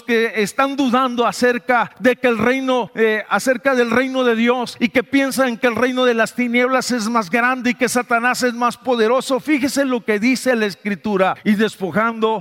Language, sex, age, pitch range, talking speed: Spanish, male, 50-69, 220-270 Hz, 195 wpm